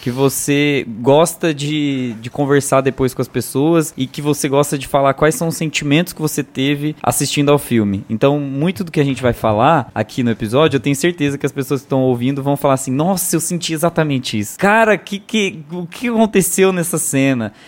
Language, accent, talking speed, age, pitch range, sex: Portuguese, Brazilian, 205 wpm, 20-39, 125-160 Hz, male